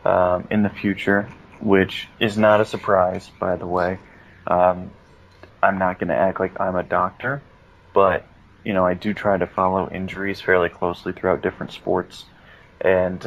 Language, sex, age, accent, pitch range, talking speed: English, male, 20-39, American, 90-100 Hz, 165 wpm